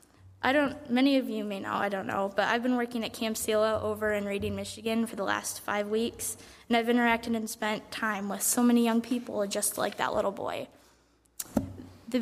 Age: 10-29